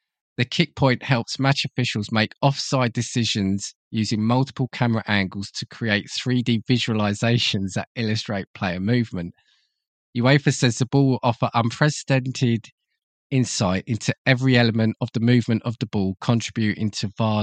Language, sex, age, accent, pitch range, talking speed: English, male, 20-39, British, 100-125 Hz, 140 wpm